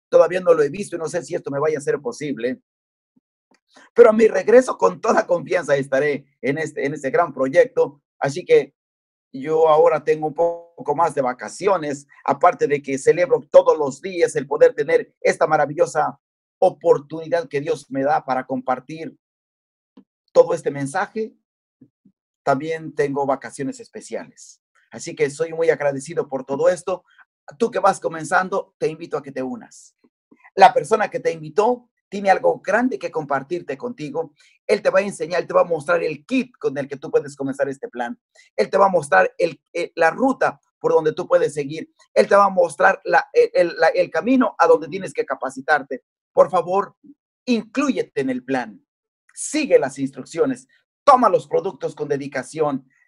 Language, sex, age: Spanish, male, 40-59